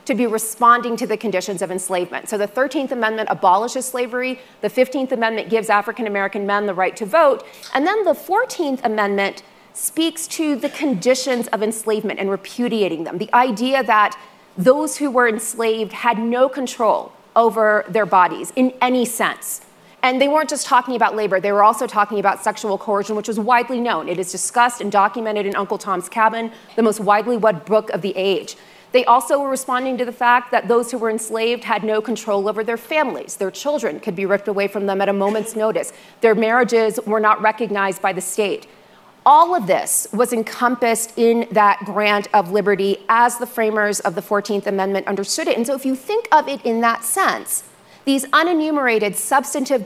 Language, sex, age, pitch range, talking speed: English, female, 30-49, 205-255 Hz, 190 wpm